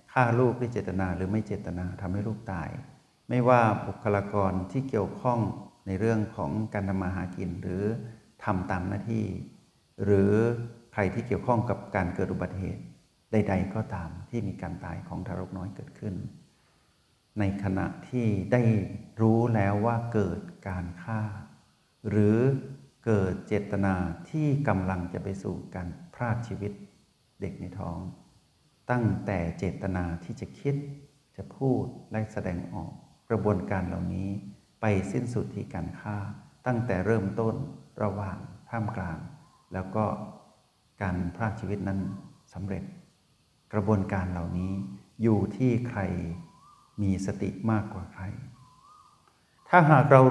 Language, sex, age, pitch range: Thai, male, 60-79, 95-115 Hz